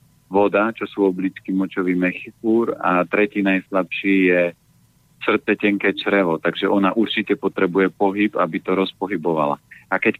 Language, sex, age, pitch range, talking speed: Slovak, male, 40-59, 95-105 Hz, 135 wpm